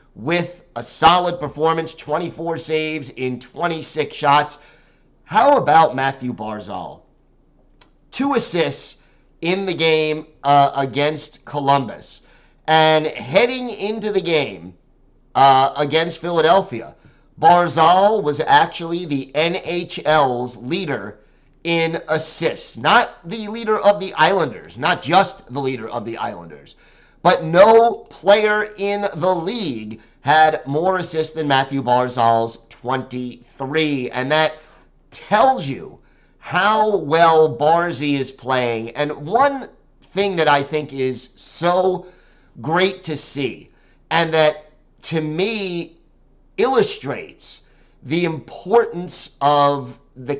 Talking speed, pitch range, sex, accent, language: 110 wpm, 135-175 Hz, male, American, English